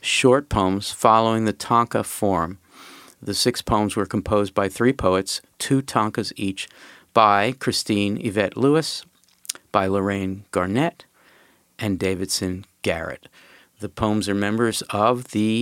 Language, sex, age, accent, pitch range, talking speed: English, male, 50-69, American, 95-120 Hz, 125 wpm